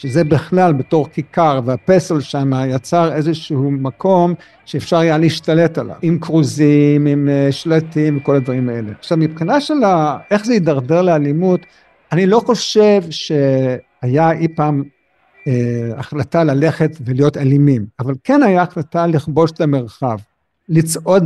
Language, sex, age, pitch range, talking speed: Hebrew, male, 50-69, 140-180 Hz, 130 wpm